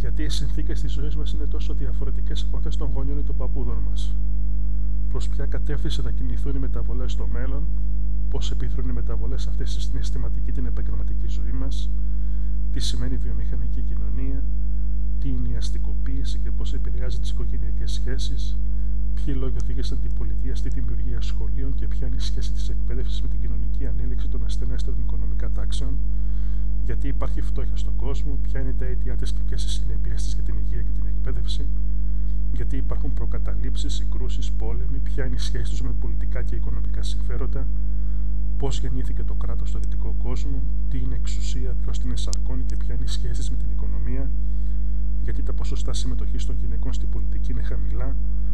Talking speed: 175 wpm